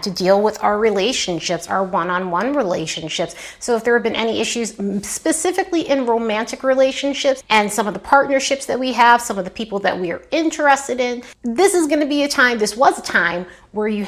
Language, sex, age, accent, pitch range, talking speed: English, female, 30-49, American, 185-250 Hz, 205 wpm